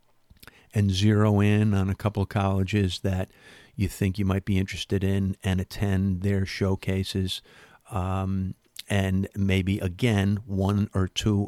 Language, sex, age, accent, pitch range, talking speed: English, male, 50-69, American, 95-105 Hz, 140 wpm